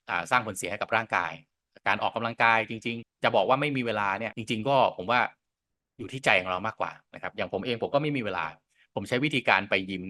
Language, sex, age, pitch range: Thai, male, 20-39, 100-130 Hz